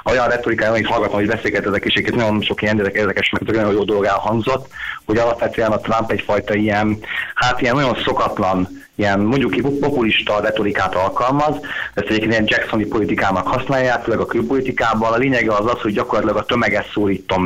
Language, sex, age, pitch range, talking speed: Hungarian, male, 30-49, 100-115 Hz, 170 wpm